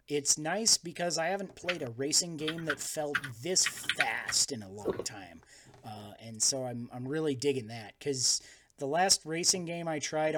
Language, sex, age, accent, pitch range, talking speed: English, male, 30-49, American, 130-165 Hz, 185 wpm